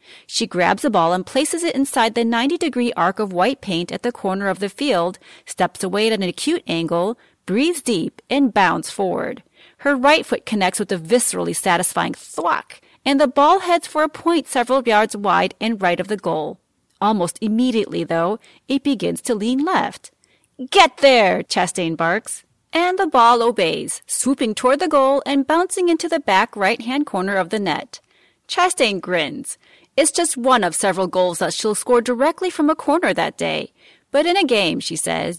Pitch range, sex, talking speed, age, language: 195-285 Hz, female, 185 wpm, 40-59, English